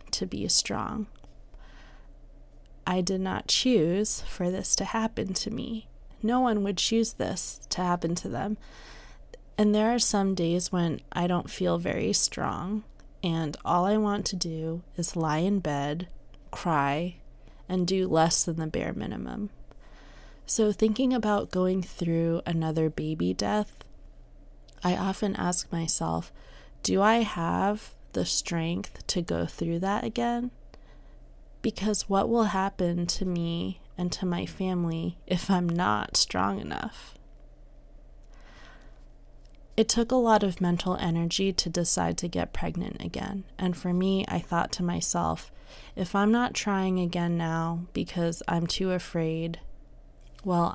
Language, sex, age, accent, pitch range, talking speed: English, female, 20-39, American, 165-200 Hz, 140 wpm